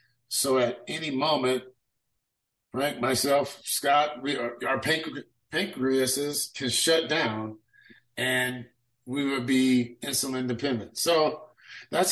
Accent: American